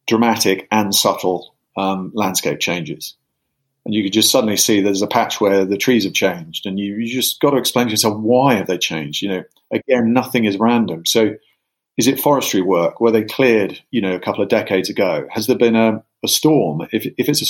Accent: British